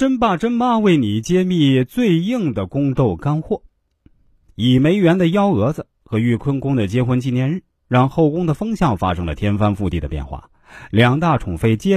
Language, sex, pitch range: Chinese, male, 105-170 Hz